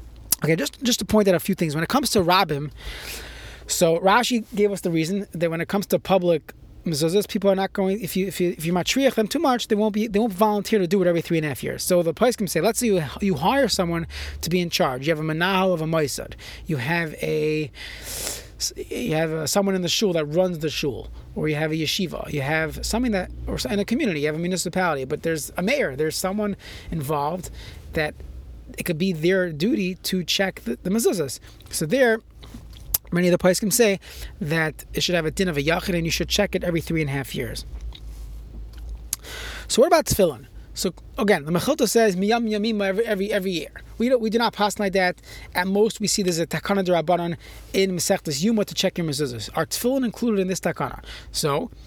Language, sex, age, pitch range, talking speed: English, male, 30-49, 160-215 Hz, 230 wpm